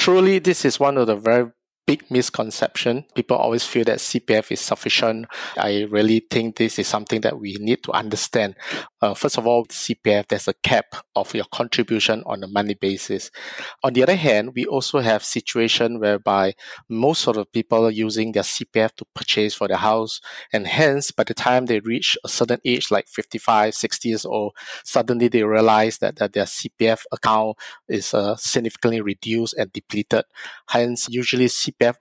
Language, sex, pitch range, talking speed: English, male, 105-120 Hz, 185 wpm